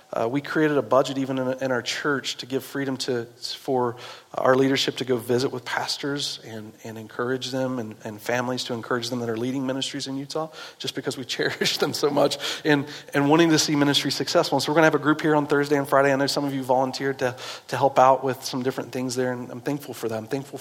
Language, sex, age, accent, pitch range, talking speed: English, male, 40-59, American, 125-145 Hz, 250 wpm